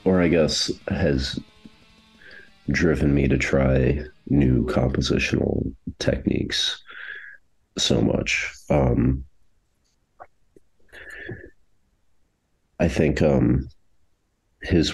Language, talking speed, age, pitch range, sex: English, 70 wpm, 40-59, 65-80 Hz, male